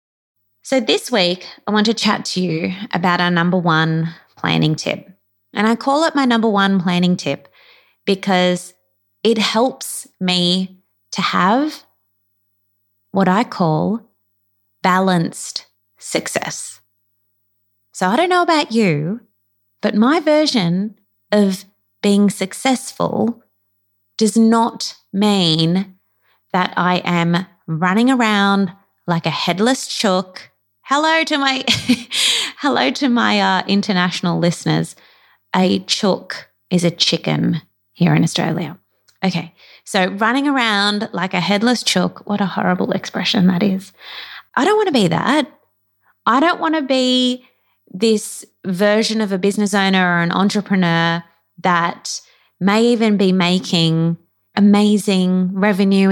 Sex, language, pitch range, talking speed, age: female, English, 170-220 Hz, 125 wpm, 20-39